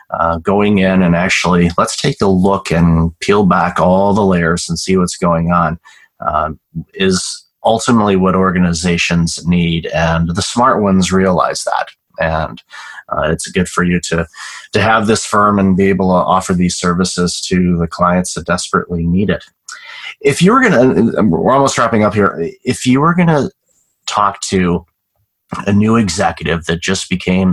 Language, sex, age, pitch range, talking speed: English, male, 30-49, 85-100 Hz, 175 wpm